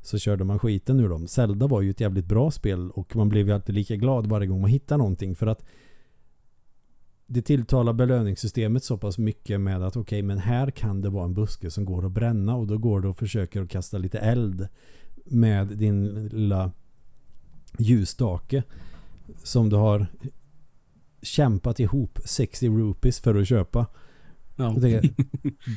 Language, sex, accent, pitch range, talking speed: Swedish, male, native, 100-120 Hz, 170 wpm